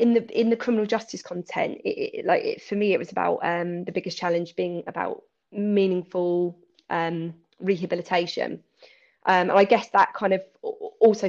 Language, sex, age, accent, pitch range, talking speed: English, female, 20-39, British, 175-215 Hz, 175 wpm